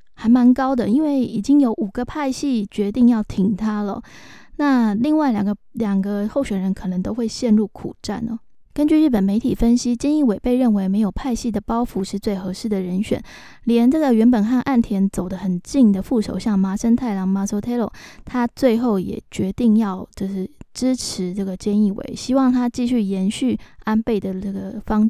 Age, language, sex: 20-39, Chinese, female